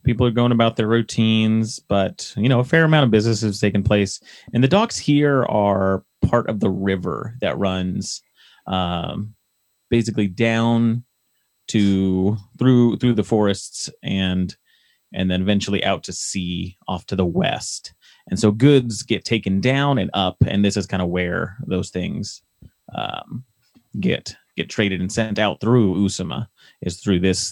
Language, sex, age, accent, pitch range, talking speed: English, male, 30-49, American, 95-120 Hz, 165 wpm